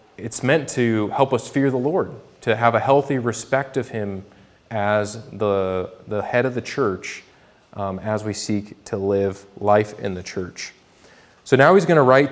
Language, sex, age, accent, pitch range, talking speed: English, male, 30-49, American, 105-135 Hz, 185 wpm